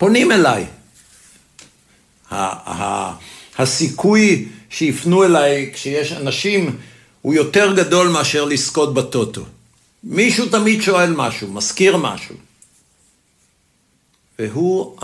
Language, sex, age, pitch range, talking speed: Hebrew, male, 60-79, 110-150 Hz, 90 wpm